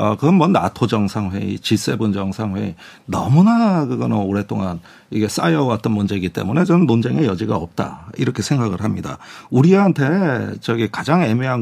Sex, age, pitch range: male, 40-59, 100-150 Hz